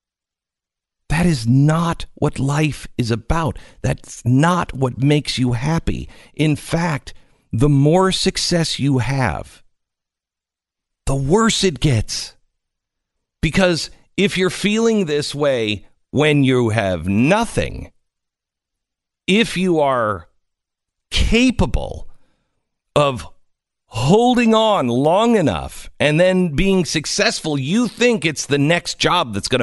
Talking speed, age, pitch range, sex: 110 wpm, 50-69, 120-190 Hz, male